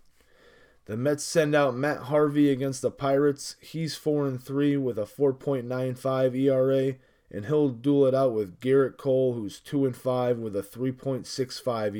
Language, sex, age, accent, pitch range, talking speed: English, male, 20-39, American, 120-135 Hz, 140 wpm